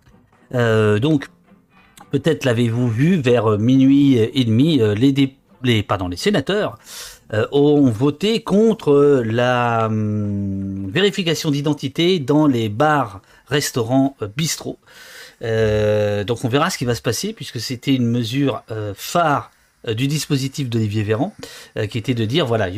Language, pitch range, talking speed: French, 115-145 Hz, 140 wpm